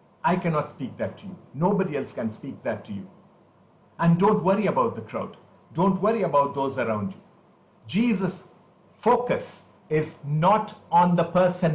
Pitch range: 150-195 Hz